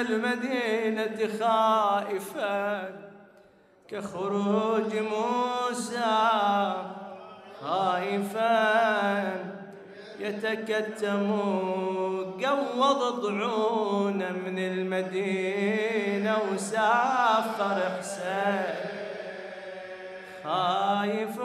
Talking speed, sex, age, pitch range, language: 35 wpm, male, 30-49, 195-230 Hz, Arabic